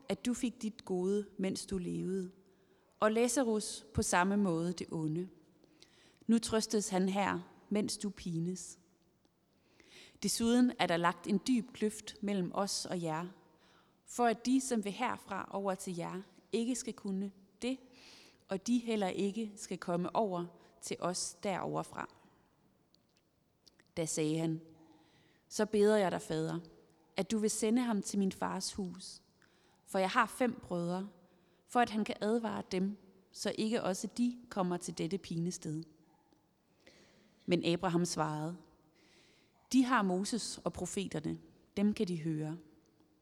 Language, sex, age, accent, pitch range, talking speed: Danish, female, 30-49, native, 170-215 Hz, 145 wpm